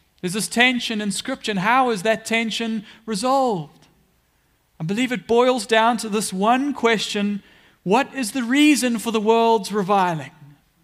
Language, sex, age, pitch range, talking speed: English, male, 40-59, 180-245 Hz, 150 wpm